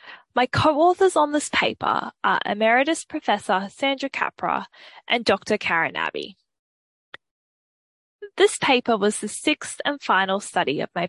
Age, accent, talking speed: 10-29, Australian, 130 wpm